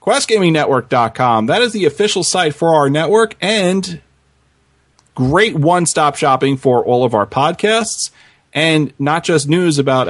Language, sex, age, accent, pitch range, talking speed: English, male, 30-49, American, 120-165 Hz, 145 wpm